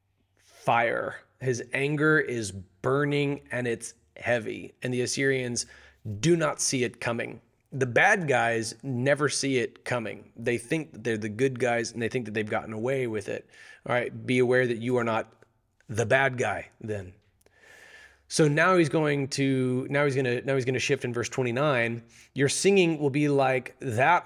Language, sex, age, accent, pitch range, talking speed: English, male, 30-49, American, 120-145 Hz, 180 wpm